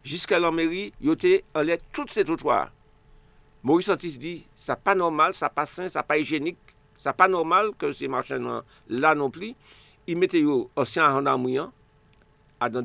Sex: male